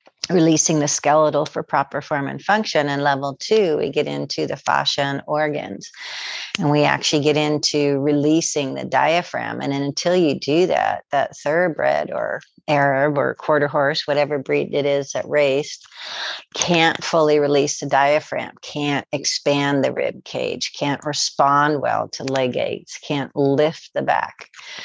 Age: 50-69